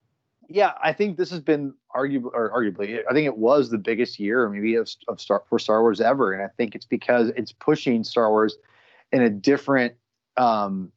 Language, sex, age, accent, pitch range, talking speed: English, male, 30-49, American, 125-155 Hz, 200 wpm